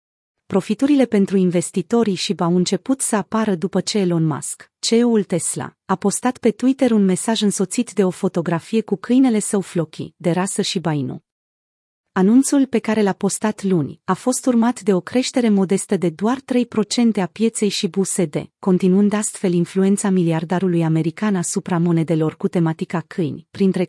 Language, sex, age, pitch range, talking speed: Romanian, female, 30-49, 180-220 Hz, 160 wpm